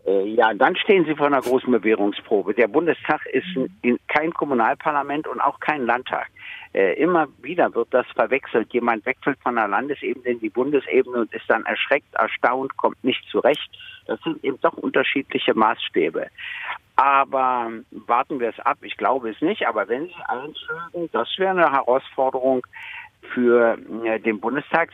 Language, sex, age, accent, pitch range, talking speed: German, male, 60-79, German, 115-165 Hz, 155 wpm